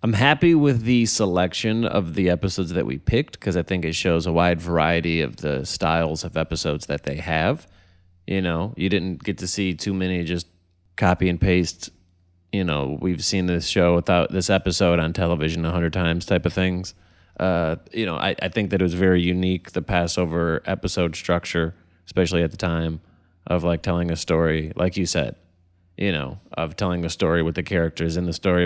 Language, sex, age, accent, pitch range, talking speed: English, male, 30-49, American, 85-95 Hz, 200 wpm